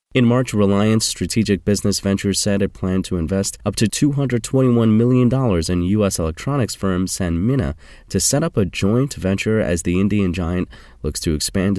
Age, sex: 30-49, male